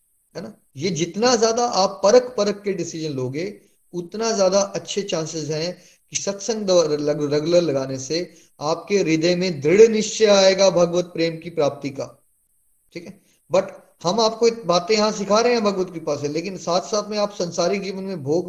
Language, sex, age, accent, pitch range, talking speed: Hindi, male, 30-49, native, 135-185 Hz, 170 wpm